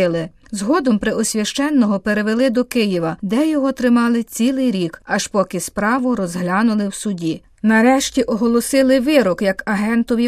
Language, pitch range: Ukrainian, 200-255 Hz